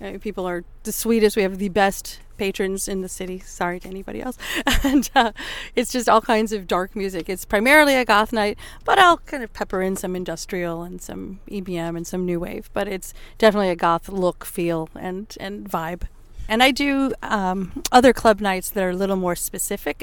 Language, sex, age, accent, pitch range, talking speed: English, female, 40-59, American, 180-220 Hz, 205 wpm